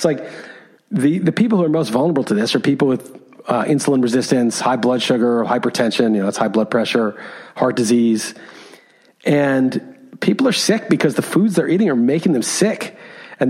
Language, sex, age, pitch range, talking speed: English, male, 40-59, 140-195 Hz, 190 wpm